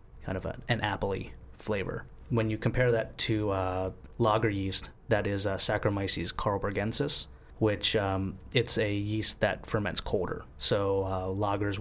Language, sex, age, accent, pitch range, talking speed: English, male, 30-49, American, 95-110 Hz, 150 wpm